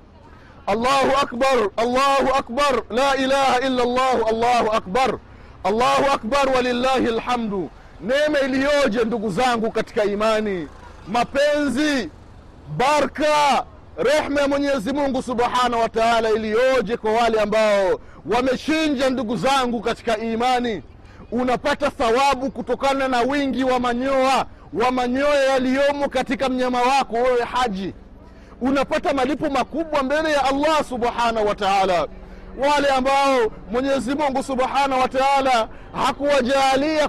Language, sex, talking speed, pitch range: Swahili, male, 110 wpm, 235-280 Hz